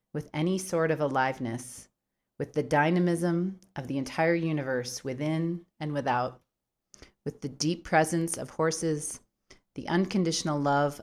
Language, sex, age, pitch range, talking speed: English, female, 30-49, 135-170 Hz, 130 wpm